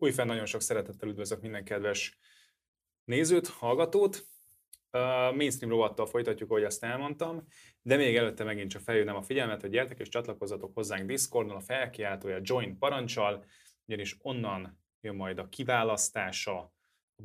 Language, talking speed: Hungarian, 145 wpm